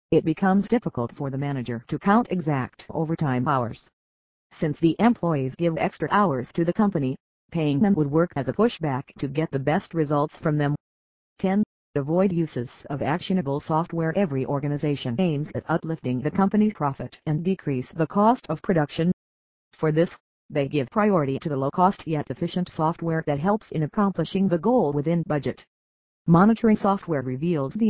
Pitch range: 140-180 Hz